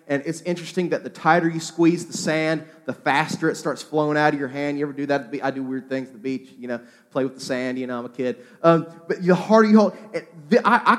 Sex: male